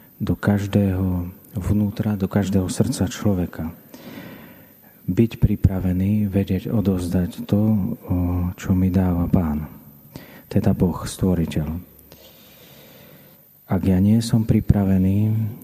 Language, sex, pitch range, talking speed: Slovak, male, 90-100 Hz, 90 wpm